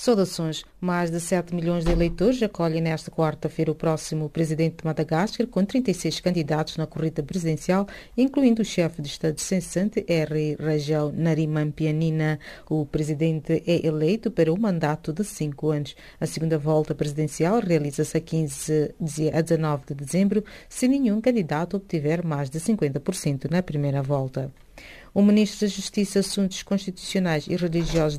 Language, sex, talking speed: English, female, 150 wpm